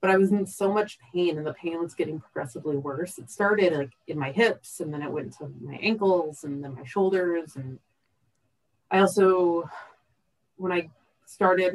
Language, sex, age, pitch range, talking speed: English, female, 30-49, 145-185 Hz, 190 wpm